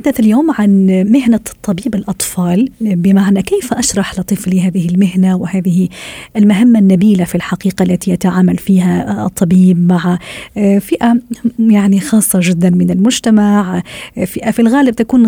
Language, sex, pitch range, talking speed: Arabic, female, 185-220 Hz, 125 wpm